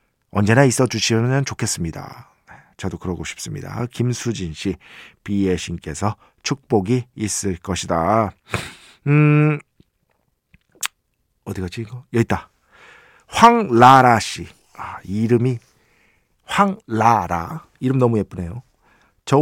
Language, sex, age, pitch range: Korean, male, 50-69, 110-165 Hz